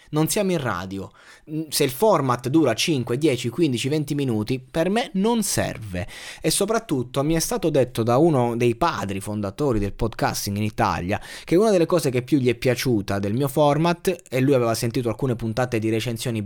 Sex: male